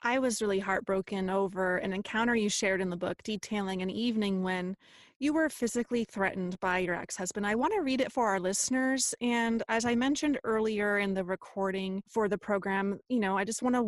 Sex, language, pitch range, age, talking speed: female, English, 195-250 Hz, 30-49, 210 wpm